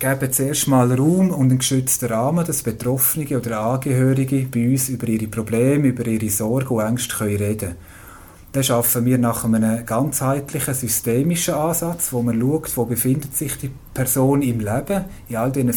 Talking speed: 180 wpm